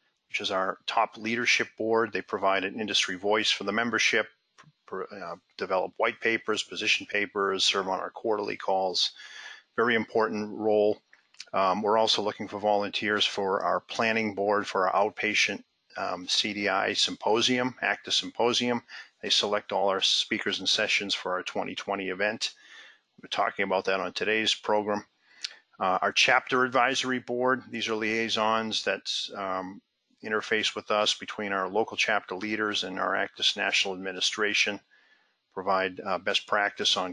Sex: male